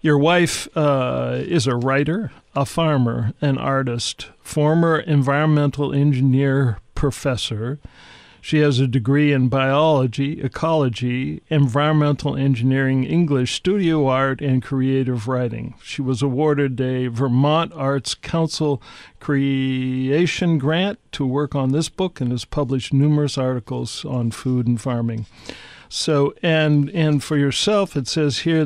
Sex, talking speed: male, 125 wpm